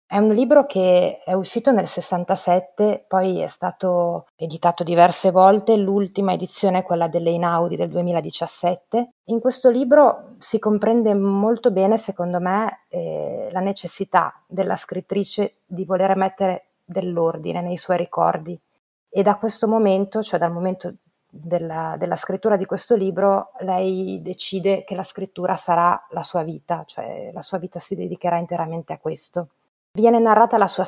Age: 30-49